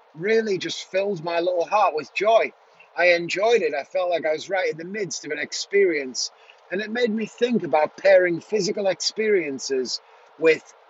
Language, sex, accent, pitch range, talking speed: English, male, British, 150-195 Hz, 180 wpm